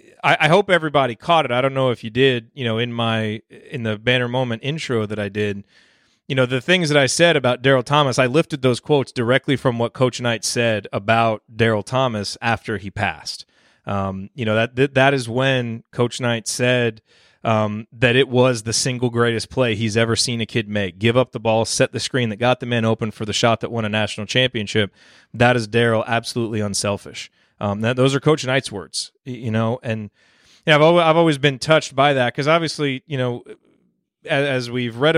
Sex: male